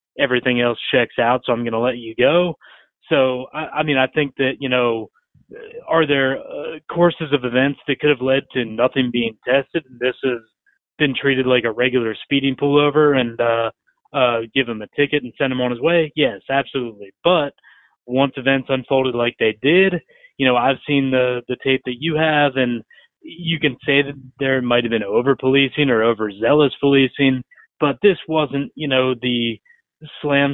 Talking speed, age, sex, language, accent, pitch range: 185 wpm, 30-49, male, English, American, 120-140 Hz